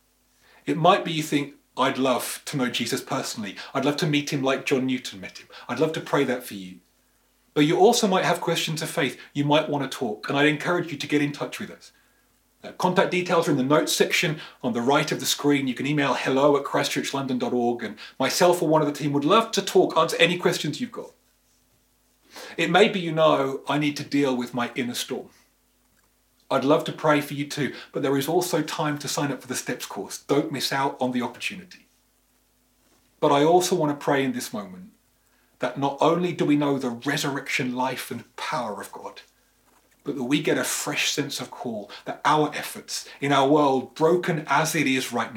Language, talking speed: English, 220 wpm